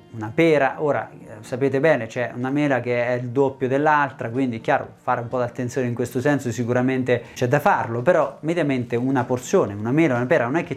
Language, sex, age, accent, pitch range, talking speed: Italian, male, 30-49, native, 125-155 Hz, 210 wpm